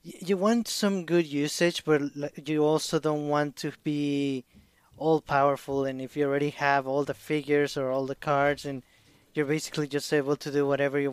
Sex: male